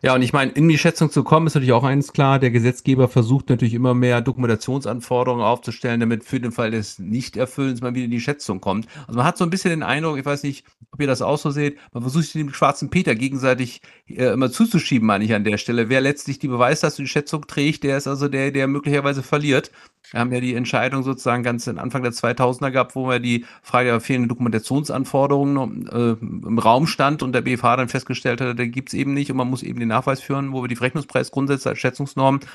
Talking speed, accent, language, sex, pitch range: 240 wpm, German, German, male, 120-140 Hz